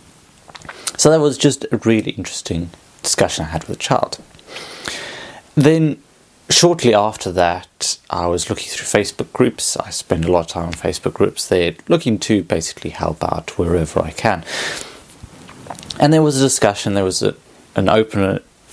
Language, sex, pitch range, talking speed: English, male, 90-125 Hz, 165 wpm